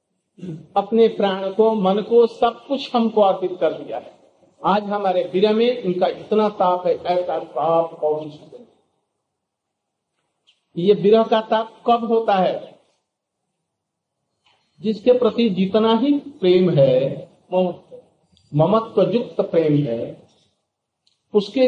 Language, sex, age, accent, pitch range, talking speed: Hindi, male, 50-69, native, 165-225 Hz, 110 wpm